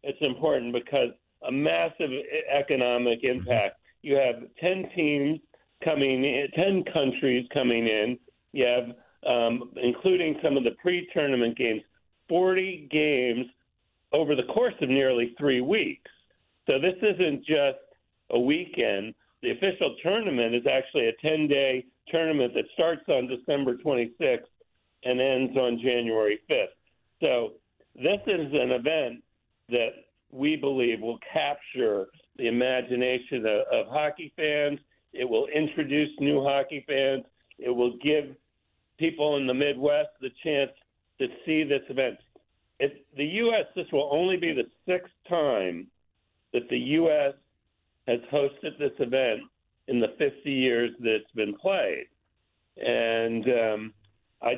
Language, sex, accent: English, male, American